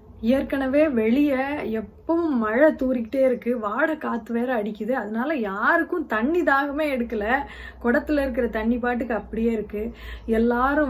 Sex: female